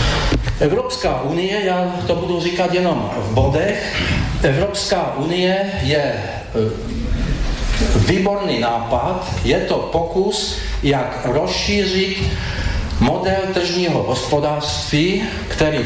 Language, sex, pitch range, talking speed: Slovak, male, 120-170 Hz, 85 wpm